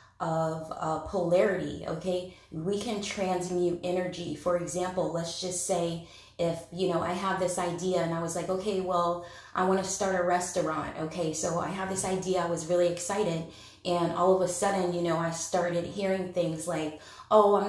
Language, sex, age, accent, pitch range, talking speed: English, female, 20-39, American, 170-190 Hz, 190 wpm